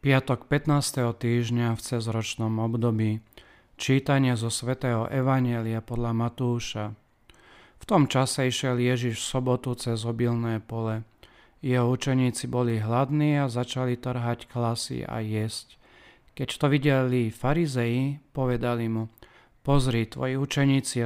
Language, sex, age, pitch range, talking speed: Slovak, male, 40-59, 120-130 Hz, 115 wpm